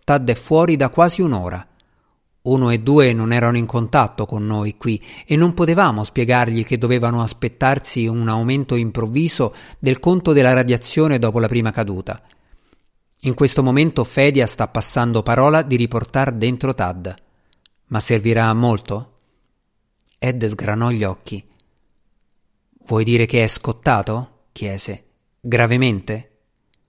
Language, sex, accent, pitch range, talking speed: Italian, male, native, 105-135 Hz, 135 wpm